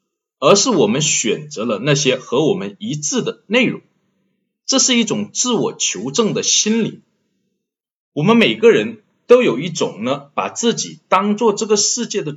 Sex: male